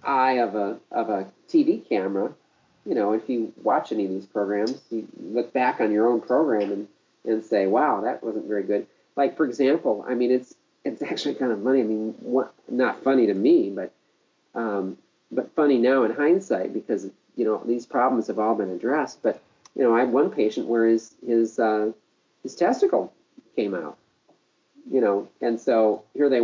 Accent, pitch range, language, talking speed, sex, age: American, 110-130 Hz, English, 195 wpm, male, 40-59